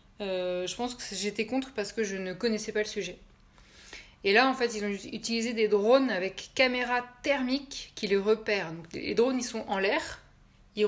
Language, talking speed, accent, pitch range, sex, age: French, 205 wpm, French, 200-240 Hz, female, 20-39